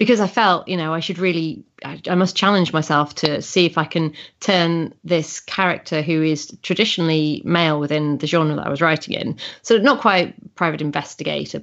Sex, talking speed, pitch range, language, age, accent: female, 195 wpm, 165-210 Hz, English, 30-49, British